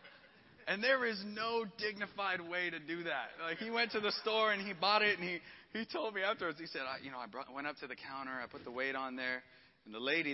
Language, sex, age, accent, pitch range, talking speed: English, male, 30-49, American, 130-215 Hz, 255 wpm